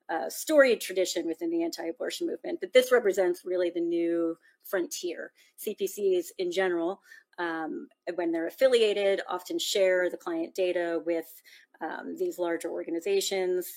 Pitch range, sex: 170-255 Hz, female